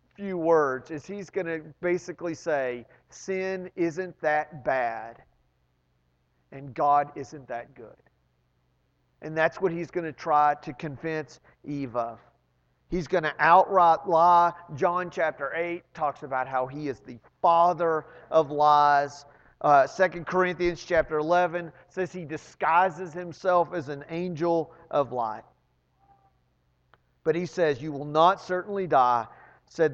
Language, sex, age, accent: English, male, 40-59, American